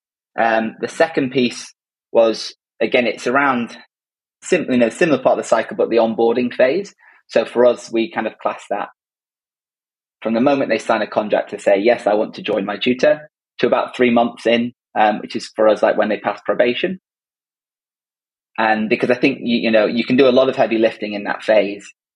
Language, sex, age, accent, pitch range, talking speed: English, male, 20-39, British, 100-120 Hz, 215 wpm